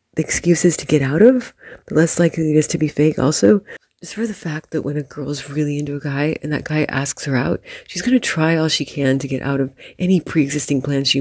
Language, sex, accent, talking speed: English, female, American, 250 wpm